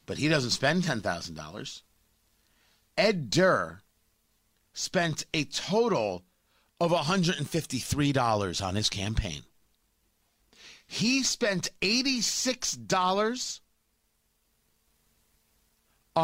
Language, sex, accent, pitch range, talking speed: English, male, American, 125-210 Hz, 65 wpm